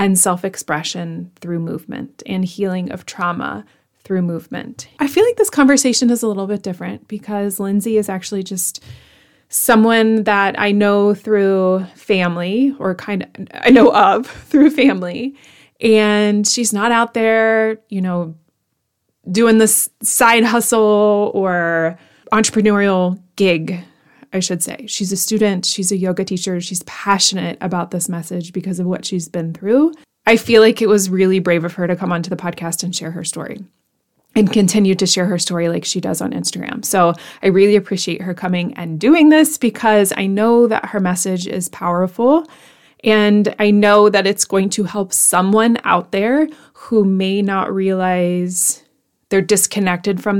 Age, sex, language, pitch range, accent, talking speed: 20-39, female, English, 180-220 Hz, American, 165 wpm